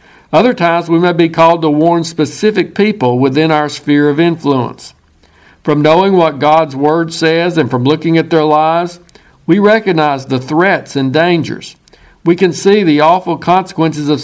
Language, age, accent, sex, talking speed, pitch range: English, 60-79, American, male, 170 wpm, 140-170 Hz